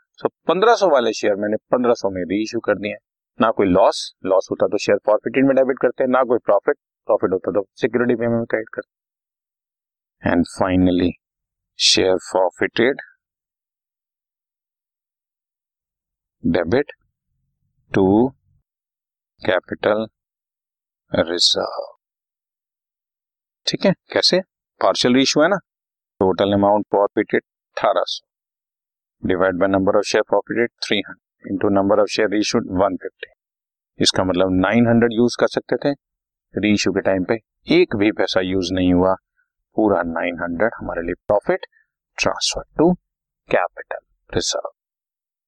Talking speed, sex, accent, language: 120 wpm, male, native, Hindi